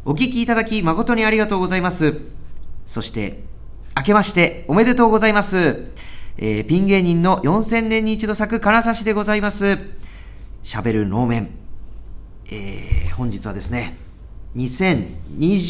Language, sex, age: Japanese, male, 40-59